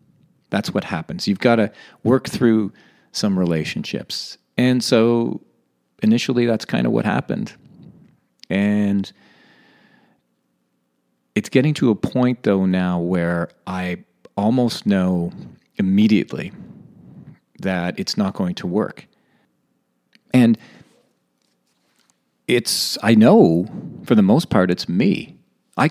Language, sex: English, male